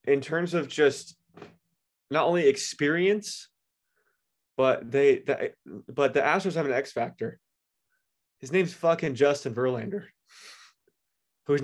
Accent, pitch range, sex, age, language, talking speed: American, 115-150 Hz, male, 20-39, English, 120 wpm